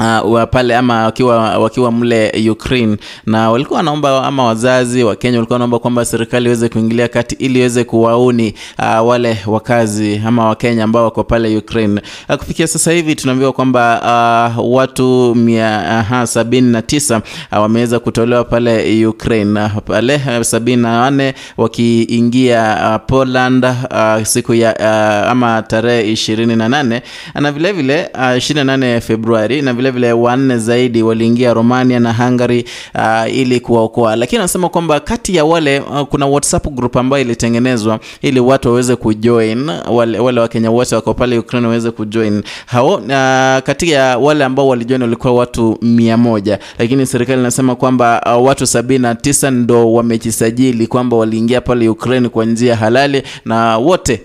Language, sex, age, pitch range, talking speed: English, male, 20-39, 115-130 Hz, 150 wpm